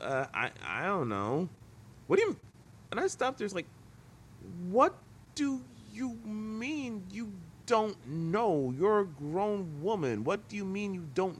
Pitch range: 115-165 Hz